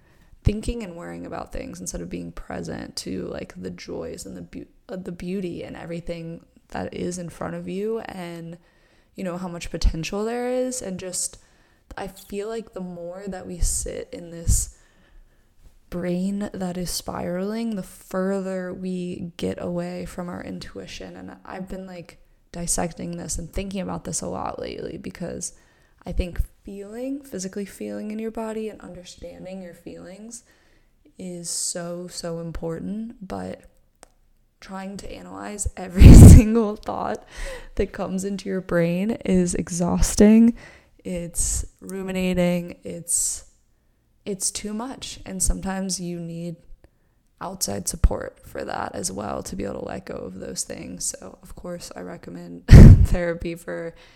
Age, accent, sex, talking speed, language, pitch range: 20-39, American, female, 150 wpm, English, 170-200 Hz